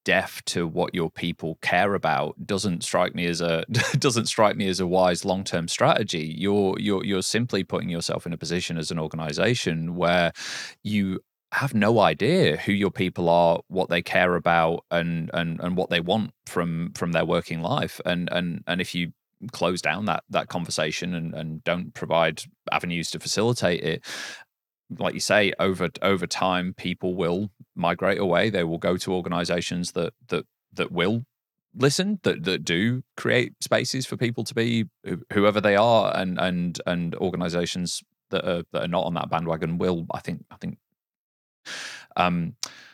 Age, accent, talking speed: 20-39, British, 175 wpm